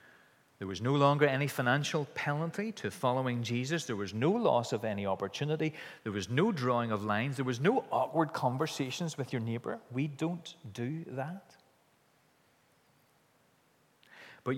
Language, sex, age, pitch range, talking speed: English, male, 40-59, 115-140 Hz, 150 wpm